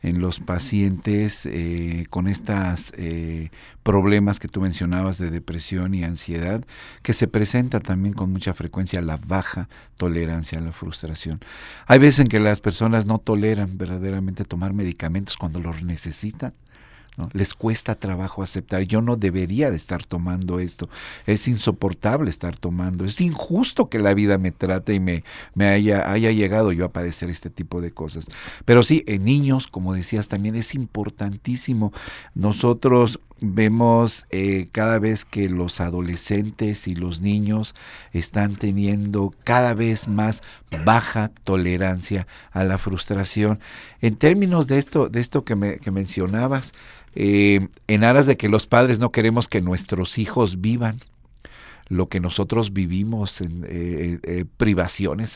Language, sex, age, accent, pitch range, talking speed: Spanish, male, 50-69, Mexican, 90-115 Hz, 150 wpm